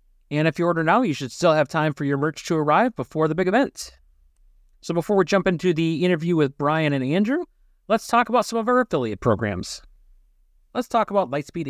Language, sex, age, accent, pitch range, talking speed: English, male, 30-49, American, 130-200 Hz, 215 wpm